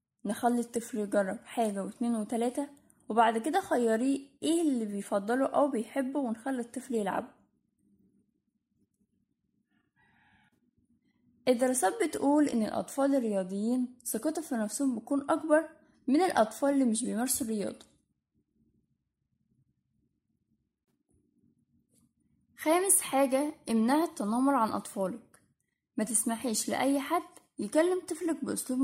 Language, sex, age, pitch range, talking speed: Arabic, female, 10-29, 230-290 Hz, 95 wpm